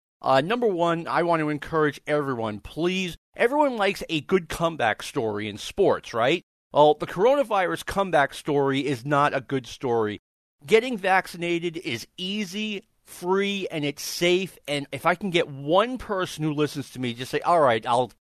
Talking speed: 170 wpm